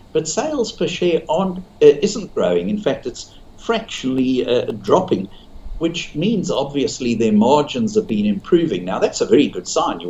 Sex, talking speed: male, 170 wpm